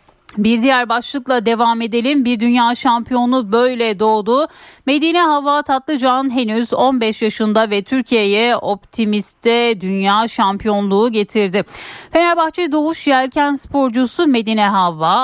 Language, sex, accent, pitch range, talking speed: Turkish, female, native, 200-260 Hz, 110 wpm